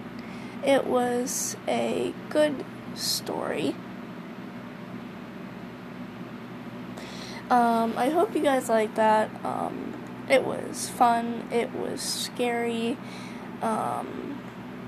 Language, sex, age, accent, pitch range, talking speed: English, female, 10-29, American, 230-255 Hz, 80 wpm